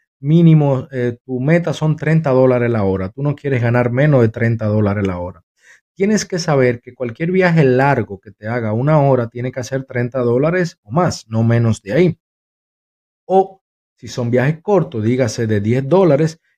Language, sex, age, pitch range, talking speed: Spanish, male, 30-49, 115-140 Hz, 185 wpm